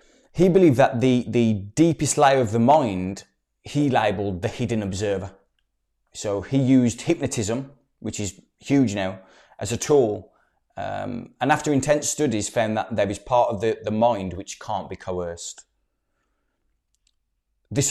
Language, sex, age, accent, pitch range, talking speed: English, male, 20-39, British, 95-125 Hz, 150 wpm